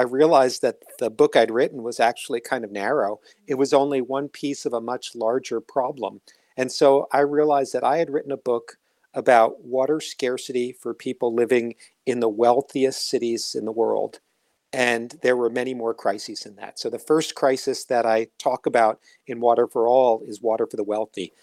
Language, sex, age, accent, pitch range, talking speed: English, male, 50-69, American, 115-140 Hz, 195 wpm